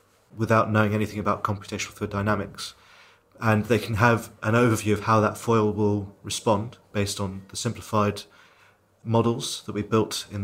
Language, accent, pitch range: English, British, 105-115 Hz